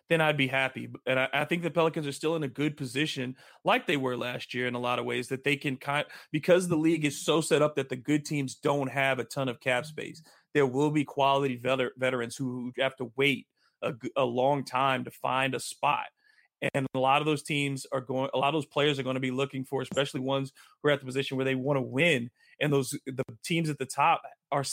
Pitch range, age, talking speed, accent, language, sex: 130-150 Hz, 30-49, 255 wpm, American, English, male